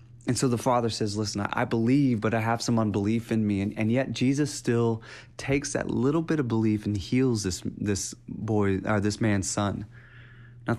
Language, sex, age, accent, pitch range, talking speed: English, male, 30-49, American, 105-120 Hz, 200 wpm